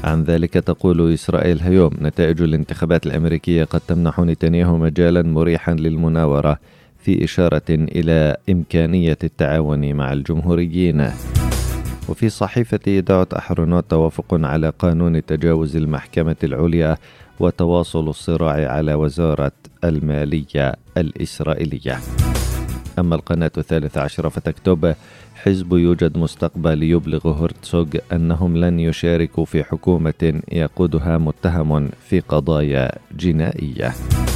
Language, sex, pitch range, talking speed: Arabic, male, 80-85 Hz, 100 wpm